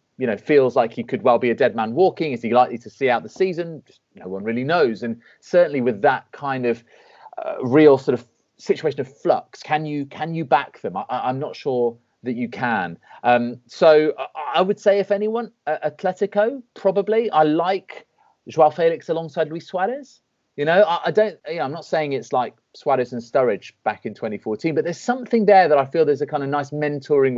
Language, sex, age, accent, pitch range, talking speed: English, male, 30-49, British, 120-170 Hz, 220 wpm